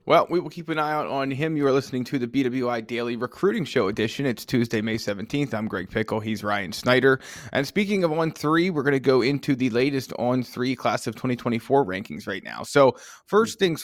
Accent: American